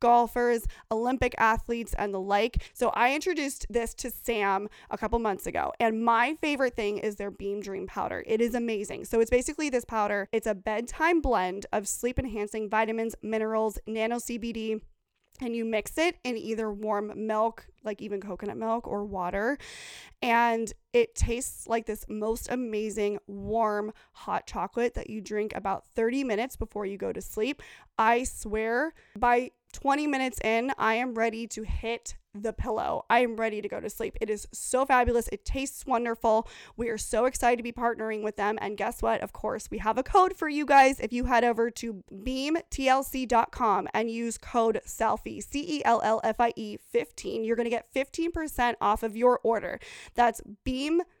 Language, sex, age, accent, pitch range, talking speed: English, female, 20-39, American, 215-245 Hz, 175 wpm